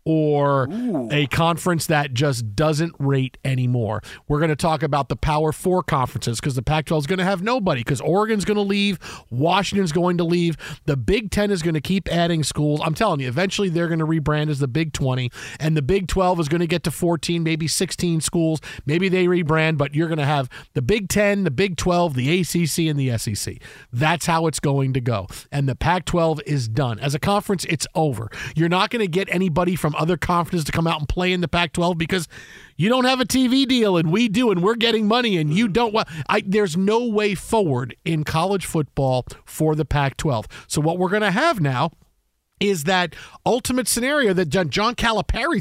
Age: 40-59